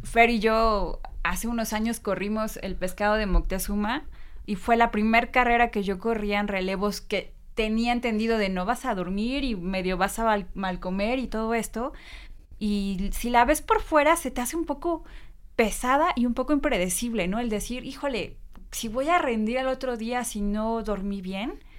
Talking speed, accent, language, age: 195 wpm, Mexican, Spanish, 20-39